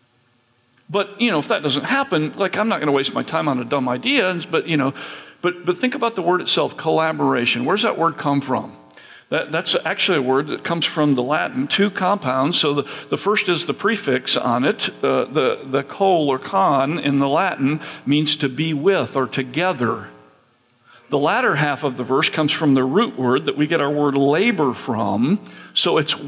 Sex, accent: male, American